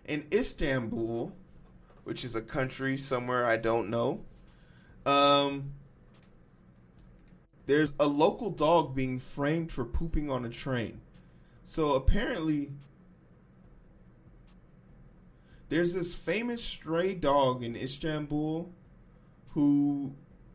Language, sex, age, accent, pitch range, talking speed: English, male, 20-39, American, 120-165 Hz, 95 wpm